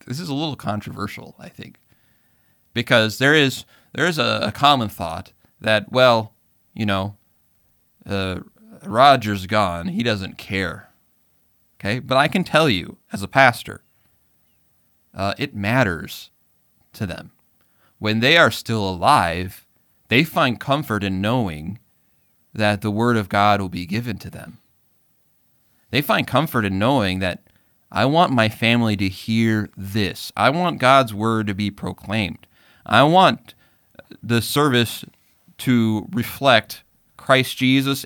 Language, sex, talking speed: English, male, 135 wpm